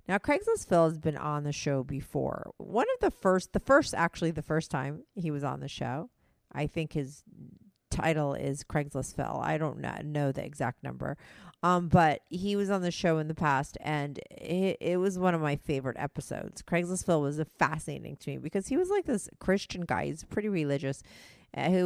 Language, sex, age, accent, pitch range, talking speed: English, female, 40-59, American, 140-175 Hz, 205 wpm